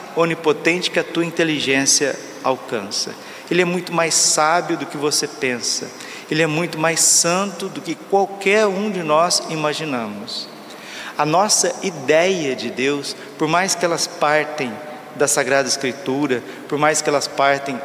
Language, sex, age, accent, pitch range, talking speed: Portuguese, male, 40-59, Brazilian, 140-175 Hz, 150 wpm